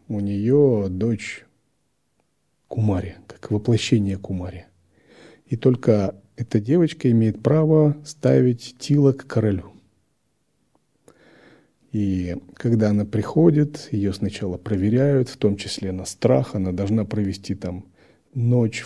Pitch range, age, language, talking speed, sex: 95-120 Hz, 40-59, Russian, 110 wpm, male